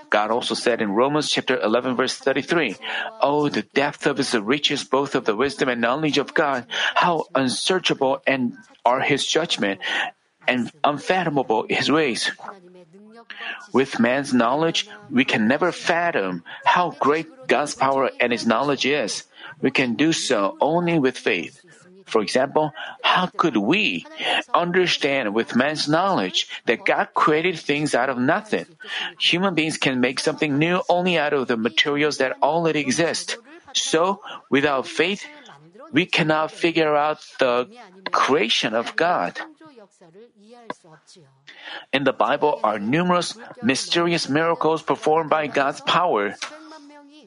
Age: 50-69